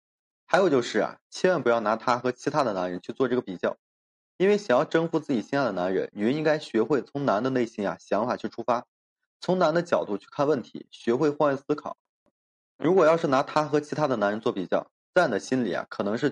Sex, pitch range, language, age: male, 115-150 Hz, Chinese, 20-39